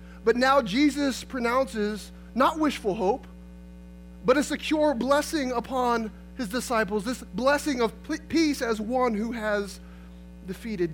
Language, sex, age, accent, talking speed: English, male, 20-39, American, 125 wpm